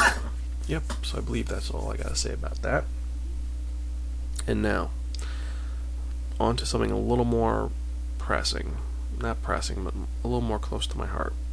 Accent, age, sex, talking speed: American, 20-39, male, 160 wpm